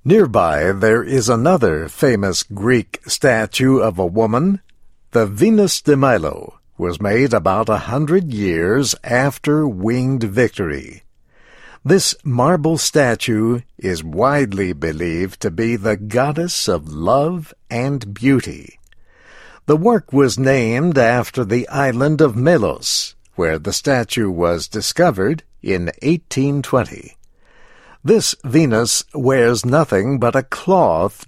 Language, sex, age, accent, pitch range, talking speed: English, male, 60-79, American, 110-140 Hz, 115 wpm